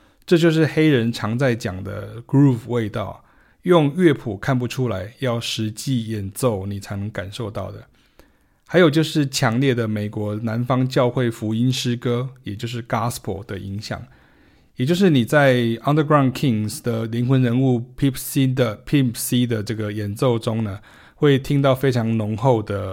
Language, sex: Chinese, male